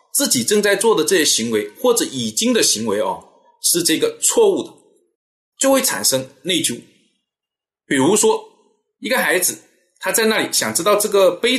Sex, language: male, Chinese